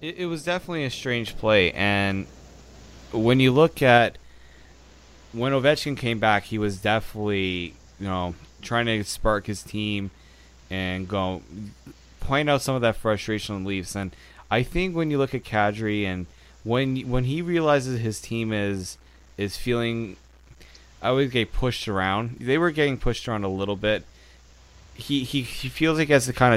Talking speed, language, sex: 170 wpm, English, male